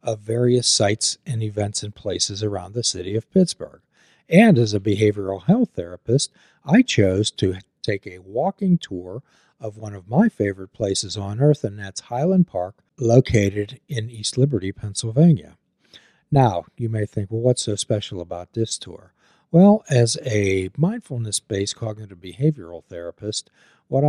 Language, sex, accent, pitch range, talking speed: English, male, American, 100-140 Hz, 150 wpm